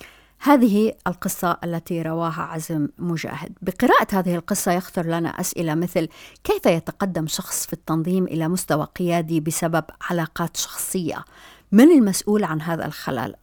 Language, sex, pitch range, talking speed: Arabic, female, 165-190 Hz, 130 wpm